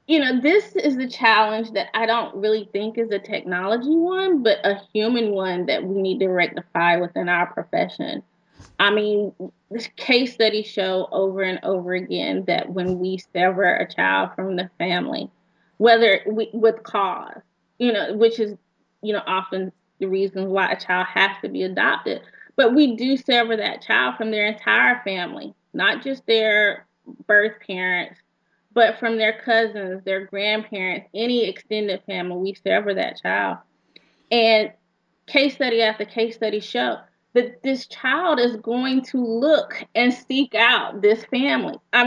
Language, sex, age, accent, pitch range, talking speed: English, female, 20-39, American, 190-230 Hz, 165 wpm